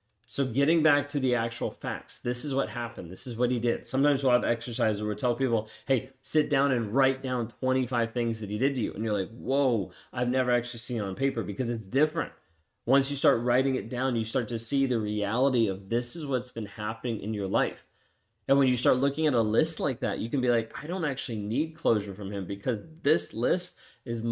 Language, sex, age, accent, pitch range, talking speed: English, male, 30-49, American, 110-130 Hz, 240 wpm